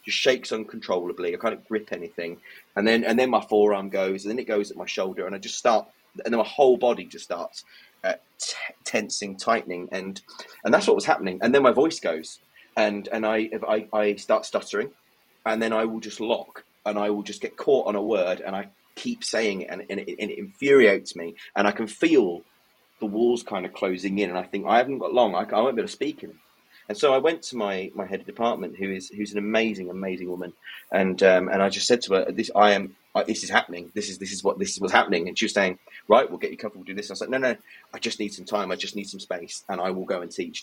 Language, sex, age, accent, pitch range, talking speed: English, male, 30-49, British, 95-110 Hz, 265 wpm